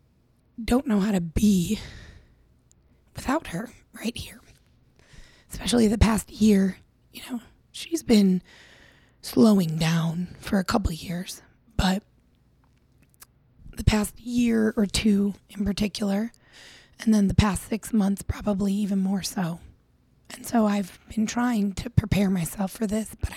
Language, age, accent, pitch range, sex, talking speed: English, 20-39, American, 190-220 Hz, female, 135 wpm